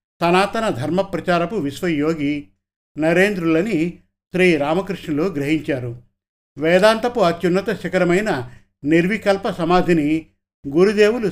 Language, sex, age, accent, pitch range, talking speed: Telugu, male, 50-69, native, 150-190 Hz, 75 wpm